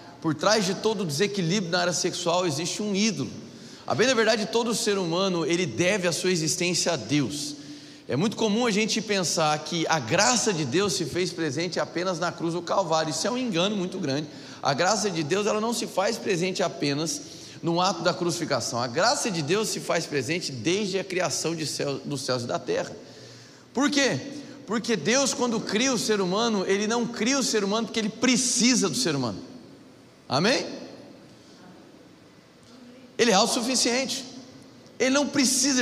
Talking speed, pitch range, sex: 180 wpm, 170-240 Hz, male